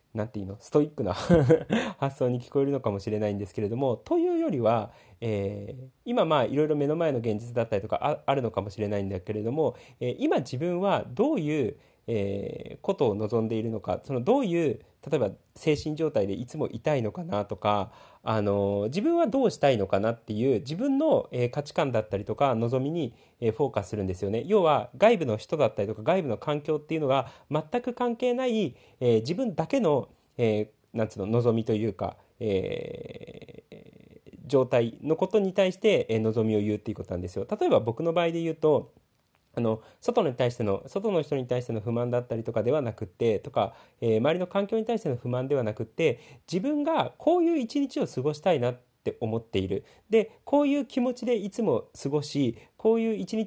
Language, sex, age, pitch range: Japanese, male, 40-59, 110-185 Hz